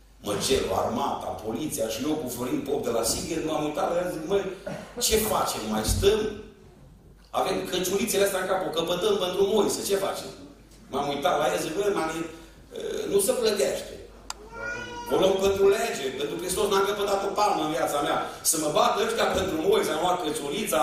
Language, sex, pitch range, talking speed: Romanian, male, 190-320 Hz, 185 wpm